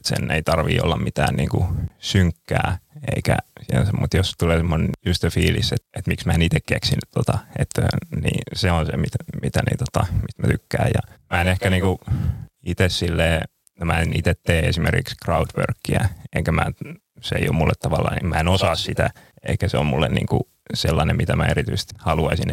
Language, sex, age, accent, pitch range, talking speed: Finnish, male, 30-49, native, 85-110 Hz, 170 wpm